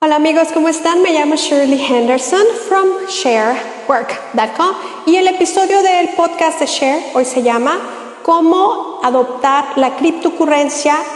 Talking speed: 130 wpm